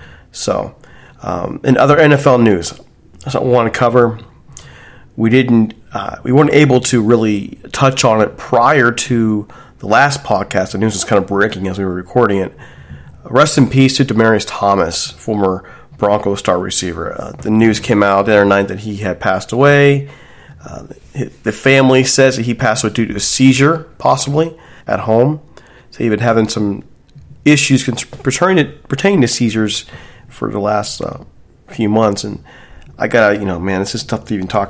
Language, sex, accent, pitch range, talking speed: English, male, American, 100-125 Hz, 180 wpm